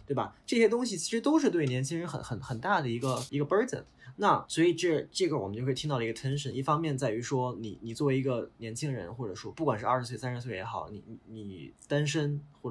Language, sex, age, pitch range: Chinese, male, 20-39, 115-150 Hz